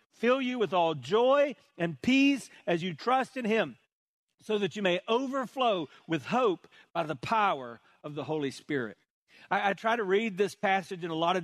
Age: 50-69